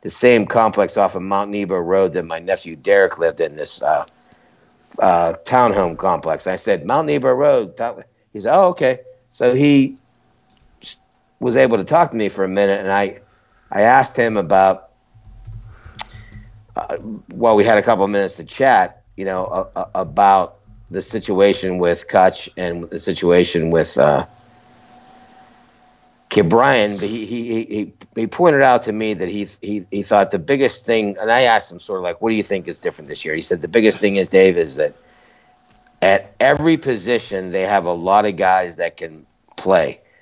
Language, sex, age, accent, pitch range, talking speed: English, male, 60-79, American, 95-115 Hz, 185 wpm